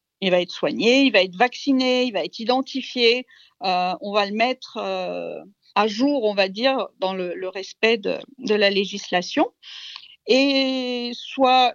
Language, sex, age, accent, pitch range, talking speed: French, female, 50-69, French, 200-275 Hz, 170 wpm